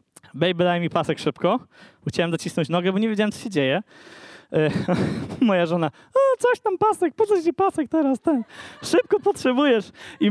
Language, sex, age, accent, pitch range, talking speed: Polish, male, 20-39, native, 155-210 Hz, 170 wpm